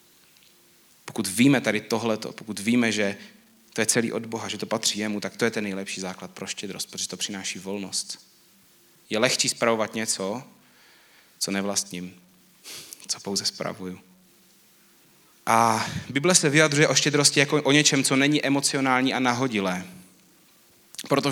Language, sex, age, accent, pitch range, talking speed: Czech, male, 30-49, native, 105-130 Hz, 145 wpm